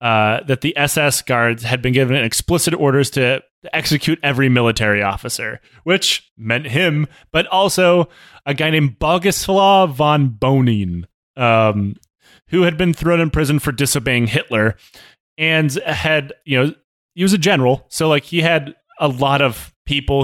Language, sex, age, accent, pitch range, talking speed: English, male, 30-49, American, 115-155 Hz, 155 wpm